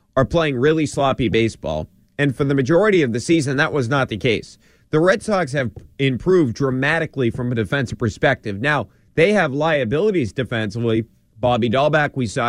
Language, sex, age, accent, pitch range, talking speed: English, male, 30-49, American, 110-140 Hz, 175 wpm